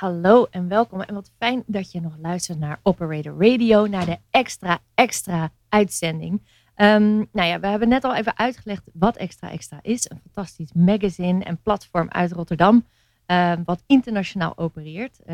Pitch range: 170-215 Hz